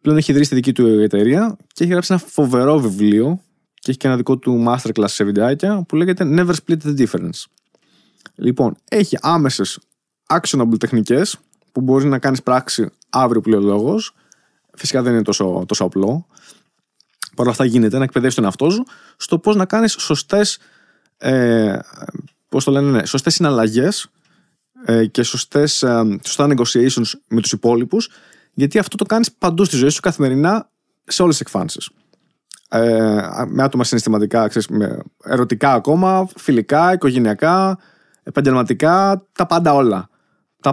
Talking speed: 155 wpm